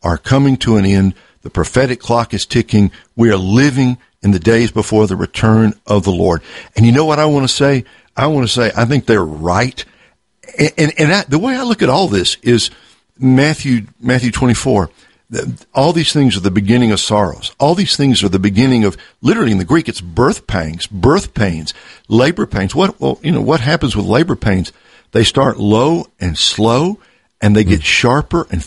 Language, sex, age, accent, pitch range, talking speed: English, male, 60-79, American, 105-130 Hz, 205 wpm